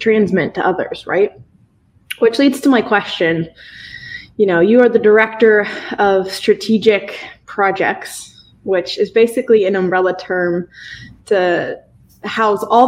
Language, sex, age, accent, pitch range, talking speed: English, female, 20-39, American, 190-235 Hz, 125 wpm